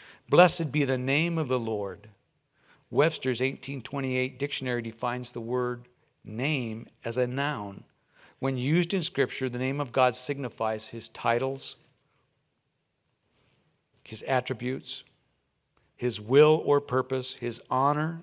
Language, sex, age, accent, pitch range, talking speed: English, male, 50-69, American, 115-140 Hz, 120 wpm